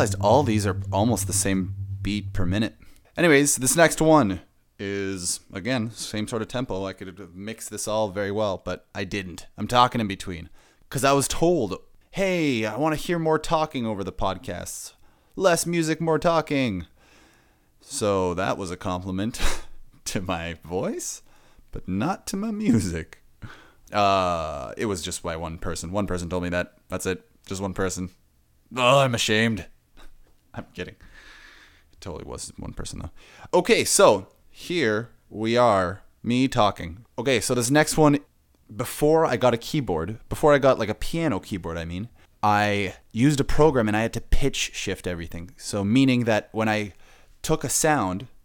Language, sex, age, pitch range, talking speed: English, male, 20-39, 95-135 Hz, 170 wpm